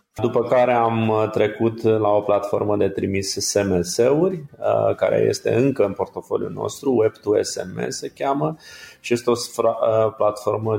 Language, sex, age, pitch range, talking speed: Romanian, male, 30-49, 105-115 Hz, 130 wpm